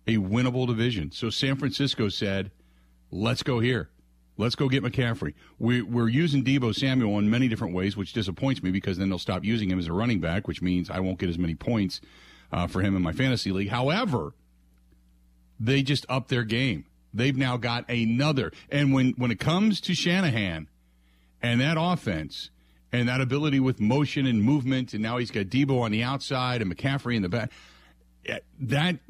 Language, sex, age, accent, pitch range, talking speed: English, male, 40-59, American, 85-130 Hz, 190 wpm